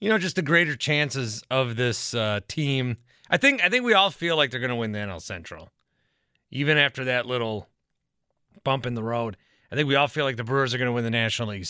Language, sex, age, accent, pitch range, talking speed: English, male, 30-49, American, 115-150 Hz, 245 wpm